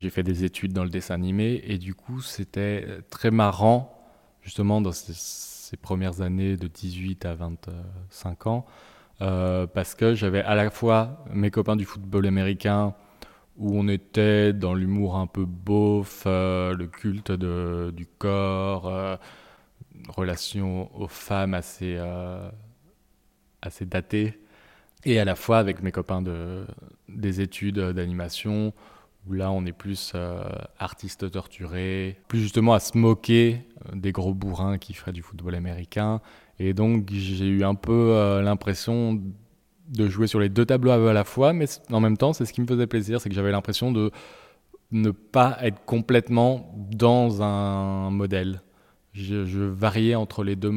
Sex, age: male, 20-39